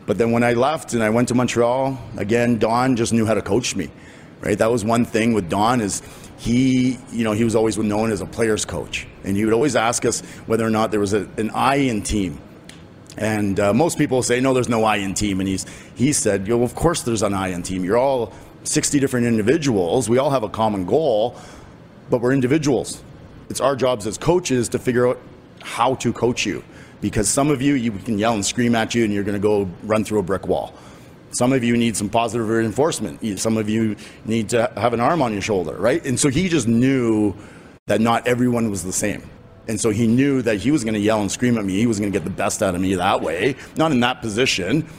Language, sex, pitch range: English, male, 105-125 Hz